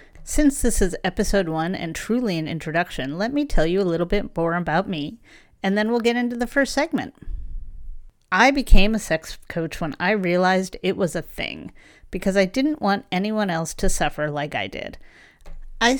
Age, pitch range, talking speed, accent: 40-59, 165-215 Hz, 190 wpm, American